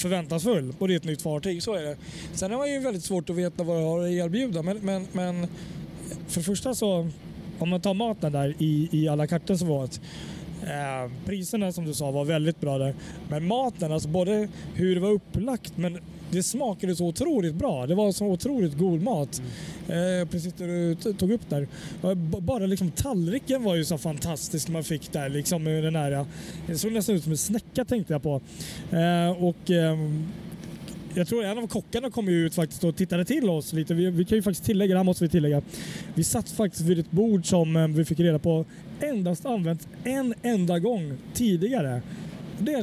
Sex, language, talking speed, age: male, Swedish, 200 wpm, 20-39